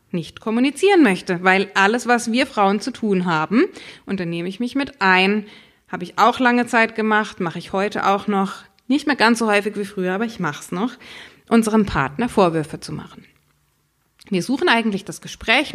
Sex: female